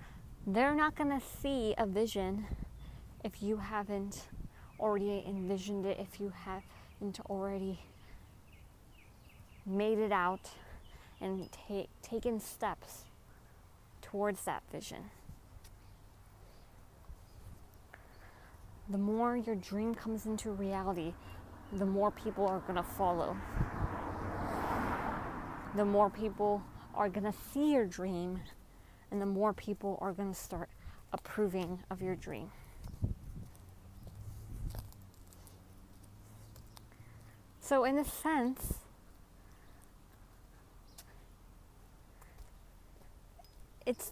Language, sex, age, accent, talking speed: English, female, 20-39, American, 90 wpm